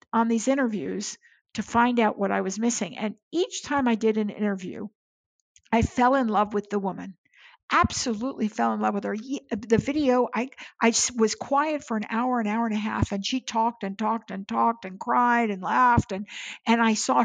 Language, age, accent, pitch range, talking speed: English, 60-79, American, 210-255 Hz, 205 wpm